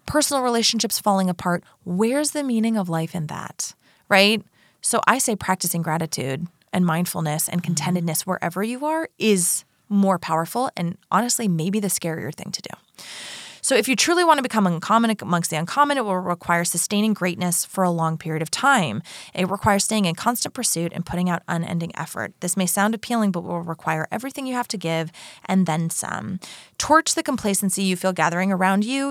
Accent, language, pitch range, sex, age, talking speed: American, English, 170-220 Hz, female, 20-39, 190 wpm